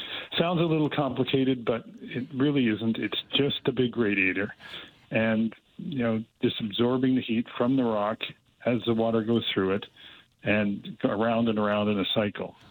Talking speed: 170 wpm